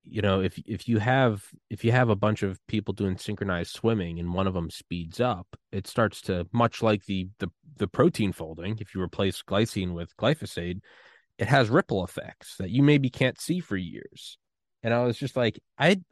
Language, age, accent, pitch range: English, 20-39, American, 100-130 Hz